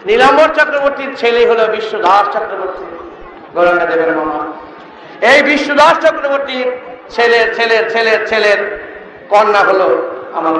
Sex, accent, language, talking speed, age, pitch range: male, Indian, English, 115 wpm, 50-69, 210-290 Hz